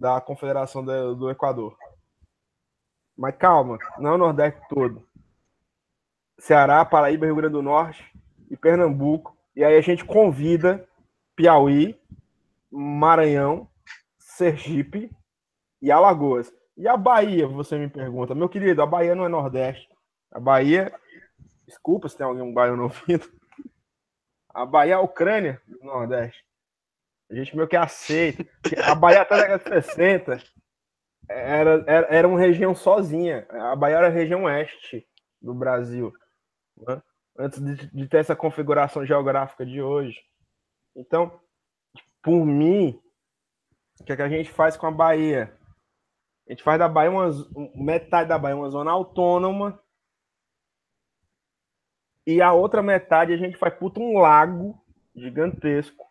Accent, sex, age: Brazilian, male, 20-39